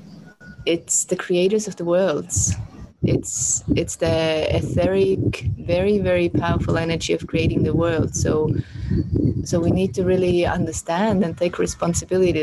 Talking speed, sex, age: 135 wpm, female, 20-39